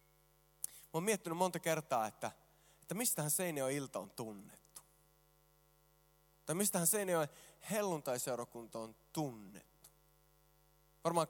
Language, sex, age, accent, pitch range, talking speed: Finnish, male, 20-39, native, 150-215 Hz, 100 wpm